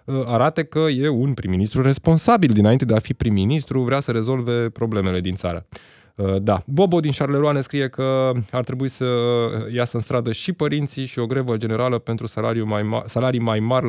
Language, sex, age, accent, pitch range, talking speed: Romanian, male, 20-39, native, 110-135 Hz, 180 wpm